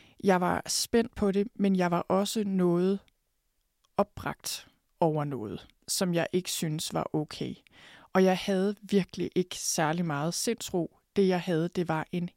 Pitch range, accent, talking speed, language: 165-195 Hz, native, 160 wpm, Danish